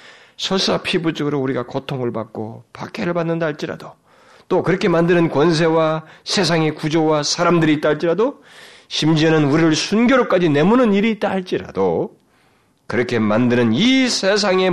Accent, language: native, Korean